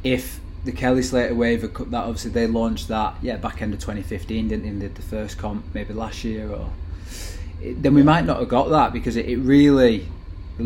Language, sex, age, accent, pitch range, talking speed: English, male, 20-39, British, 90-120 Hz, 220 wpm